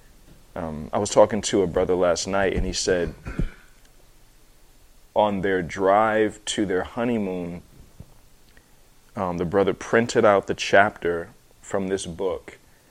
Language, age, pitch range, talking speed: English, 20-39, 95-115 Hz, 130 wpm